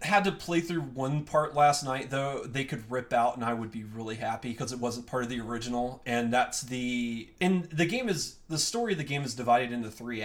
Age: 30-49